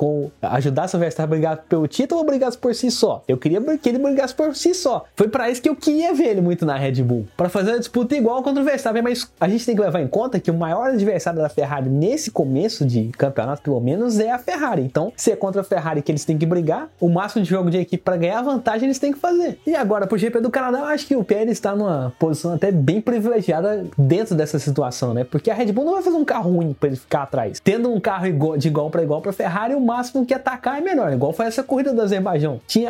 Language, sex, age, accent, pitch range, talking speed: Portuguese, male, 20-39, Brazilian, 165-250 Hz, 265 wpm